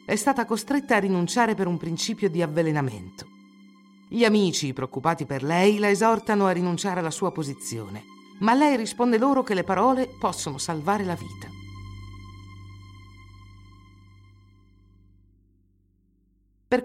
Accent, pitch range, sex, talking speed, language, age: native, 130-205 Hz, female, 120 wpm, Italian, 50-69